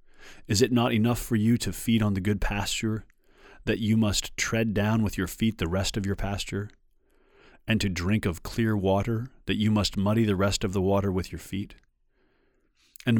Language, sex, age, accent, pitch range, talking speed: English, male, 30-49, American, 90-110 Hz, 200 wpm